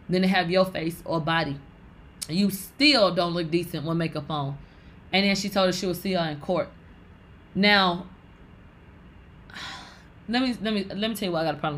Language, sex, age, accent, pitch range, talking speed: English, female, 20-39, American, 165-215 Hz, 210 wpm